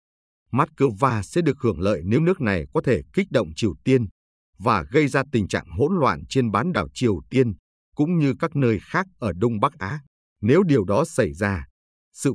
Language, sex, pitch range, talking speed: Vietnamese, male, 100-140 Hz, 205 wpm